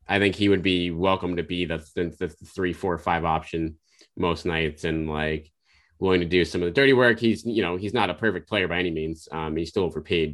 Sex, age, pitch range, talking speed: male, 30-49, 85-130 Hz, 245 wpm